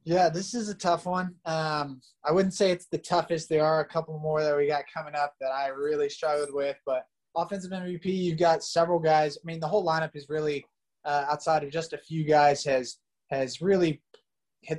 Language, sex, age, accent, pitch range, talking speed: English, male, 20-39, American, 150-175 Hz, 215 wpm